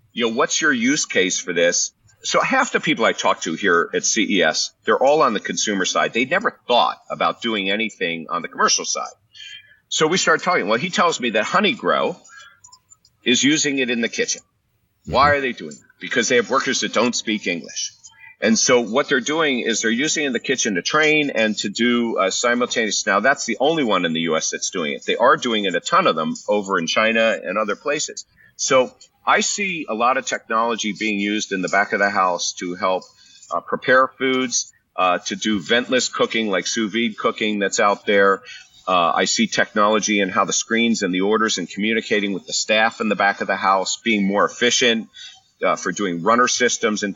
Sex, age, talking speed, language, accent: male, 50-69, 215 wpm, English, American